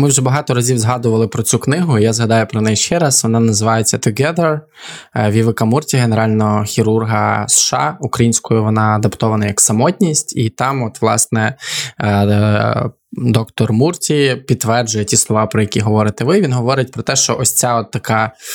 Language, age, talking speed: Ukrainian, 20-39, 160 wpm